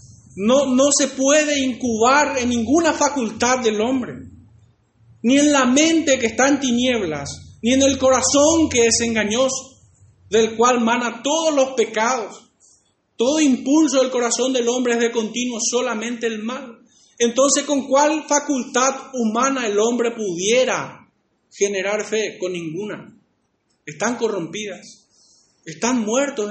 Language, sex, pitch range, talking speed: Spanish, male, 215-265 Hz, 135 wpm